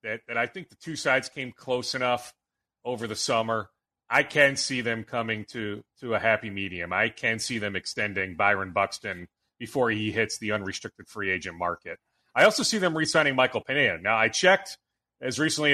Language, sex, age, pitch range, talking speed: English, male, 30-49, 115-150 Hz, 190 wpm